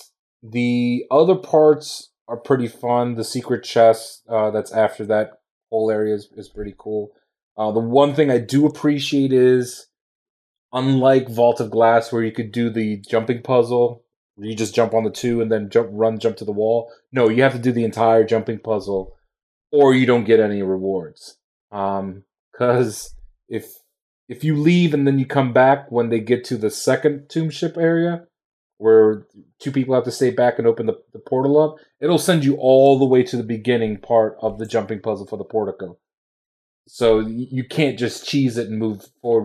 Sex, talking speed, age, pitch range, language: male, 190 wpm, 30-49, 110-135 Hz, English